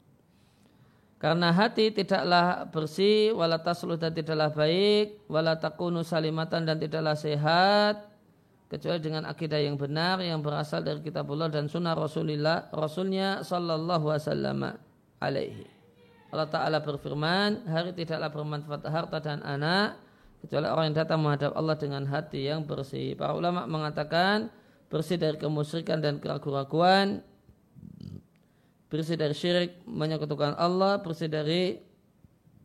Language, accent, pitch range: Indonesian, native, 150-180 Hz